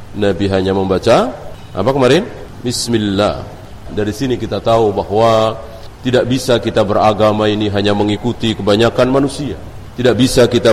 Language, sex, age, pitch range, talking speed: Indonesian, male, 40-59, 105-135 Hz, 130 wpm